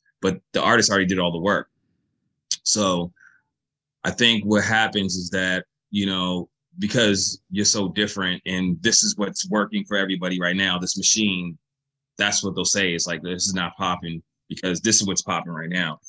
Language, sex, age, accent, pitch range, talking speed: English, male, 30-49, American, 90-110 Hz, 185 wpm